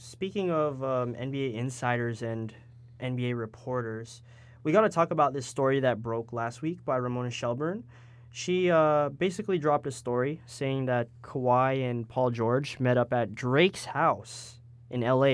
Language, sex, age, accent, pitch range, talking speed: English, male, 20-39, American, 120-135 Hz, 160 wpm